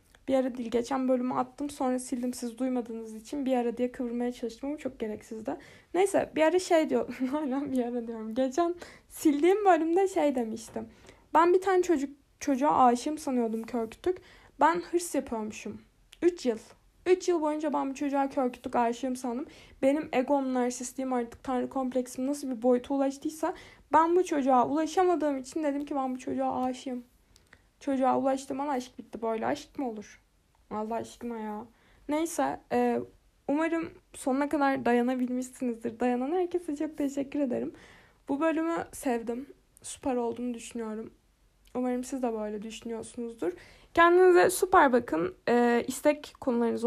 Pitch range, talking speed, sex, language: 240-300 Hz, 145 wpm, female, Turkish